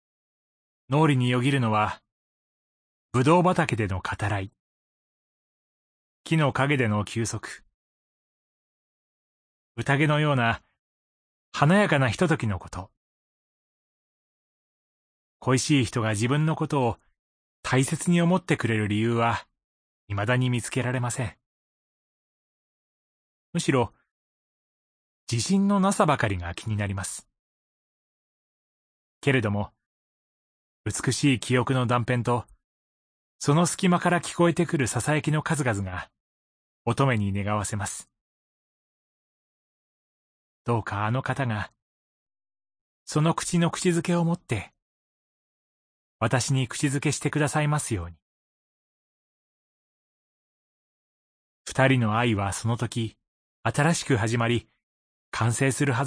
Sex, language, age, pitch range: male, Japanese, 30-49, 105-150 Hz